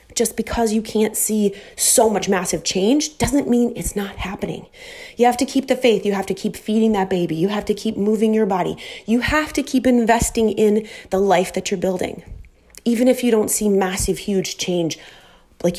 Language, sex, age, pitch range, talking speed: English, female, 30-49, 190-245 Hz, 205 wpm